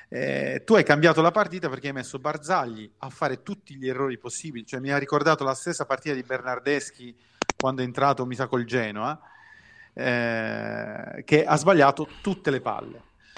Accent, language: native, Italian